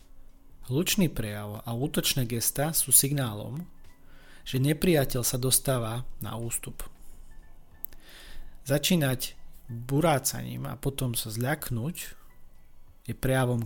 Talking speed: 90 wpm